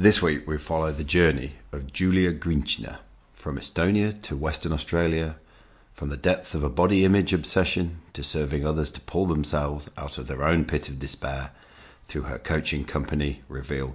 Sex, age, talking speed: male, 40-59, 170 wpm